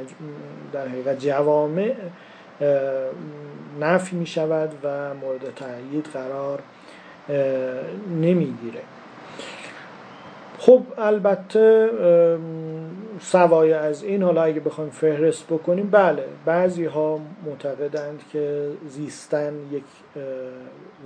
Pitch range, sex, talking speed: 140-175 Hz, male, 85 wpm